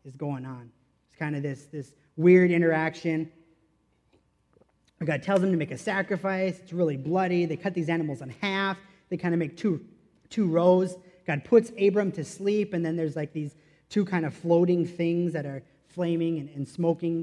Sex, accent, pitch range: male, American, 150-185 Hz